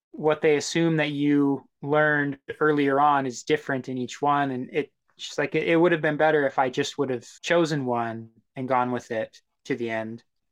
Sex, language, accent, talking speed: male, English, American, 210 wpm